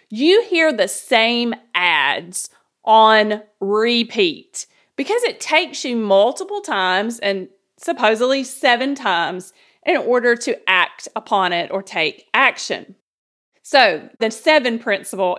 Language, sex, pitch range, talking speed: English, female, 220-310 Hz, 115 wpm